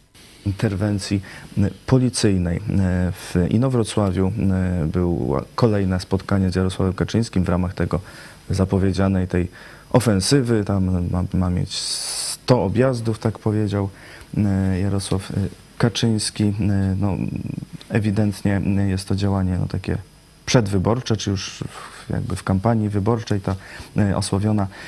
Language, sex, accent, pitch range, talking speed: Polish, male, native, 95-110 Hz, 100 wpm